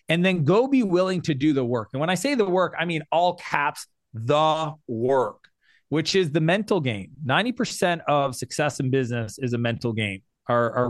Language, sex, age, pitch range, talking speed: English, male, 30-49, 125-155 Hz, 205 wpm